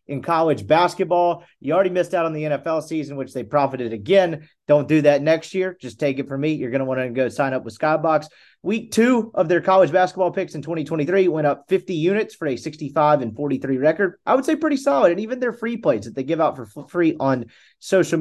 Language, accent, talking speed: English, American, 235 wpm